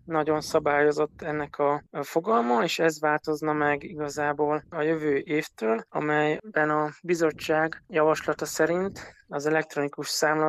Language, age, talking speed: Hungarian, 20-39, 120 wpm